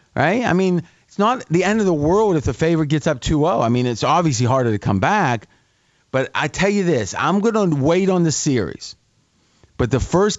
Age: 40-59